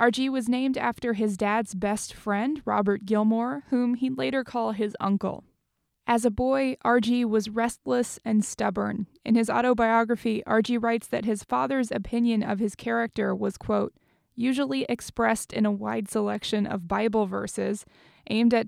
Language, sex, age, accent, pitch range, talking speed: English, female, 20-39, American, 205-240 Hz, 155 wpm